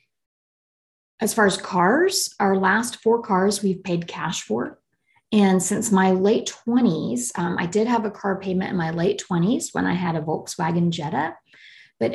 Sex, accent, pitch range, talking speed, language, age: female, American, 175-215 Hz, 175 wpm, English, 30-49